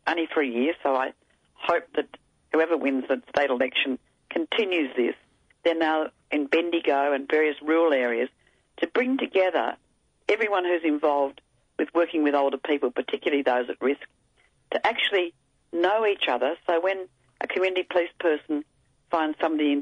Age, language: 40-59, English